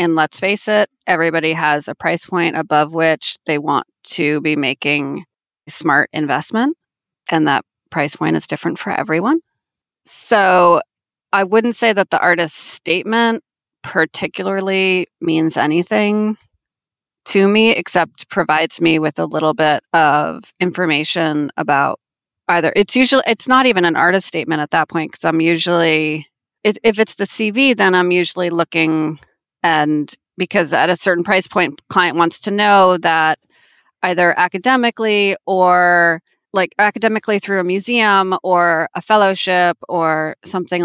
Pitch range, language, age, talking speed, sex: 160-200 Hz, English, 30-49, 145 wpm, female